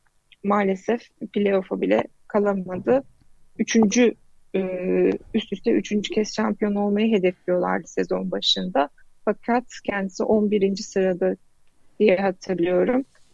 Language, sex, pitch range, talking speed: Turkish, female, 185-235 Hz, 90 wpm